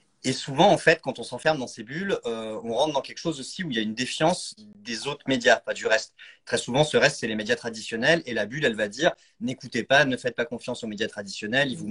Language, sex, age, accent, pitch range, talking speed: French, male, 30-49, French, 105-140 Hz, 270 wpm